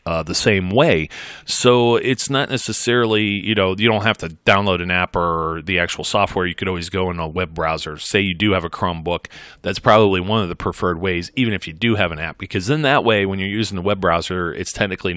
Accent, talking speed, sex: American, 240 wpm, male